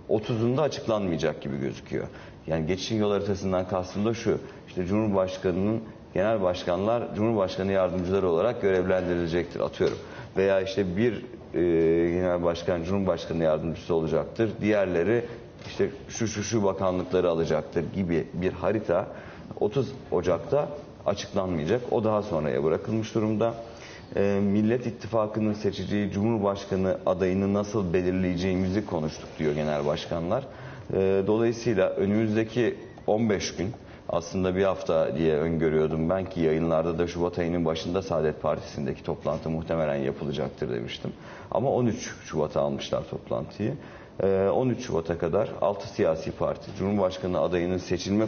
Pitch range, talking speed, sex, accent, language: 85-105 Hz, 115 wpm, male, native, Turkish